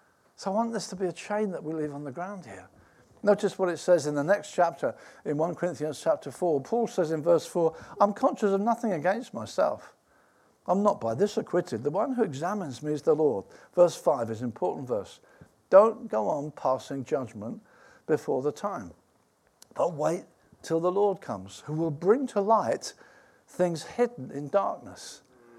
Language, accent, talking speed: English, British, 190 wpm